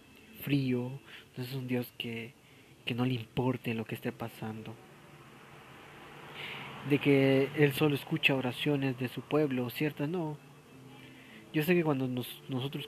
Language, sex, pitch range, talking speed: Spanish, male, 120-150 Hz, 145 wpm